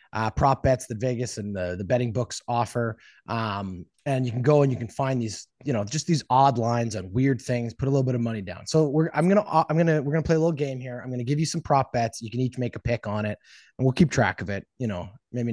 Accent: American